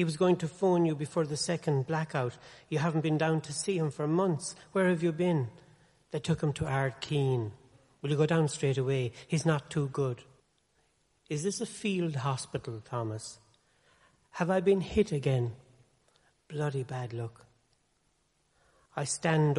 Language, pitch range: English, 130-155 Hz